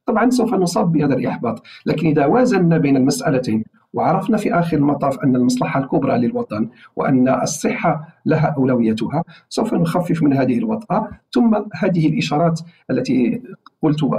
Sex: male